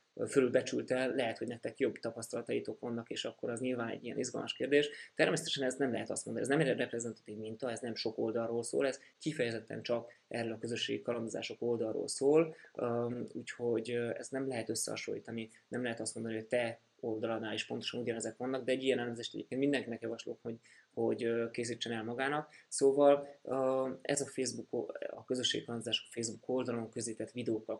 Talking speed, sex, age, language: 170 wpm, male, 20-39, Hungarian